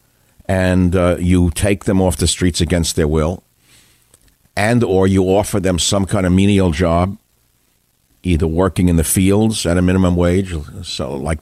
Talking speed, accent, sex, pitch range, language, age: 170 wpm, American, male, 85-100 Hz, English, 60-79